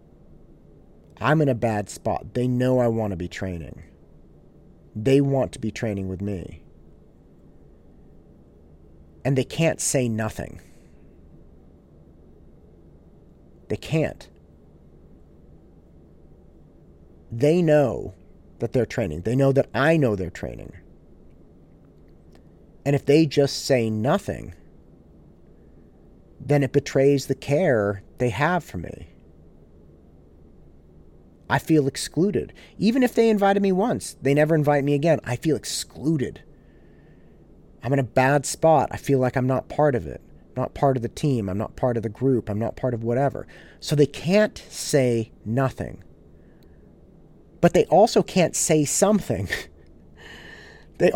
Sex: male